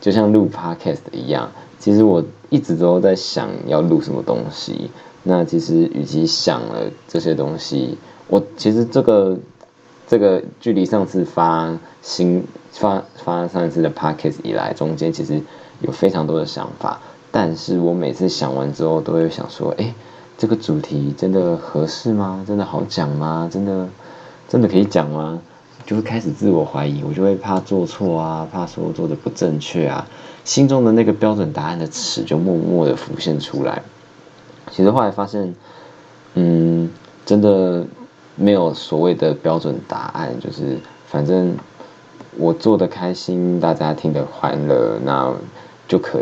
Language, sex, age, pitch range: Chinese, male, 20-39, 80-100 Hz